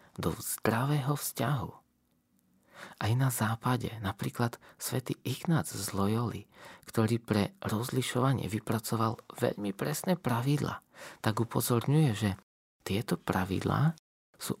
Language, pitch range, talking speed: Slovak, 105-140 Hz, 100 wpm